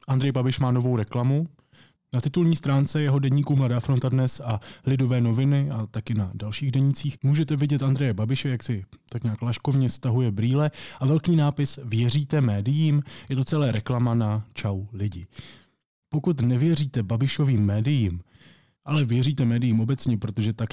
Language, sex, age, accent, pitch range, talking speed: Czech, male, 20-39, native, 110-135 Hz, 155 wpm